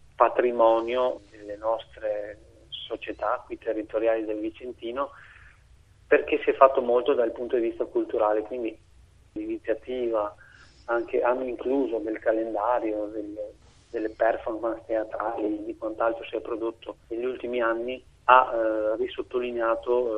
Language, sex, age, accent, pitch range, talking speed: Italian, male, 30-49, native, 110-125 Hz, 120 wpm